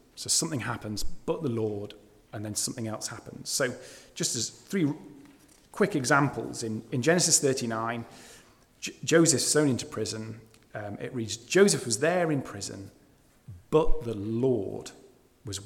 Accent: British